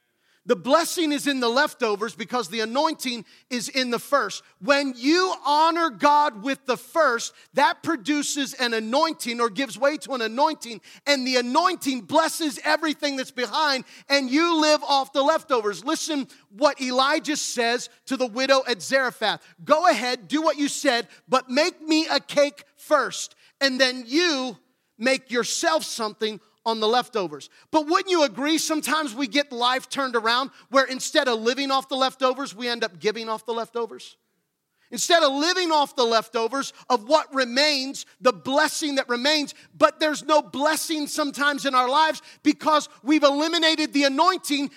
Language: English